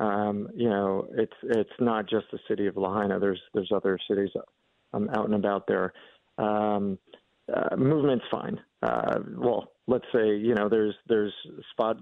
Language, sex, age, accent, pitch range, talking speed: English, male, 40-59, American, 100-110 Hz, 165 wpm